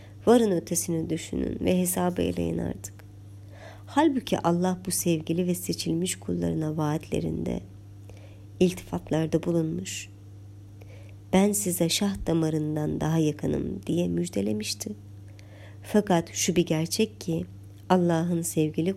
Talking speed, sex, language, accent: 100 wpm, male, Turkish, native